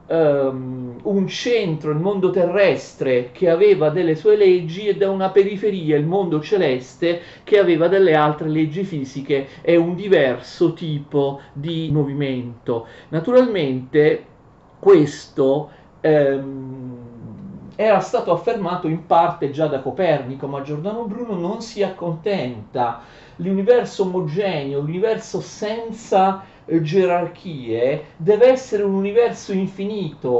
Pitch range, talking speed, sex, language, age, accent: 145-200 Hz, 115 wpm, male, Italian, 40-59, native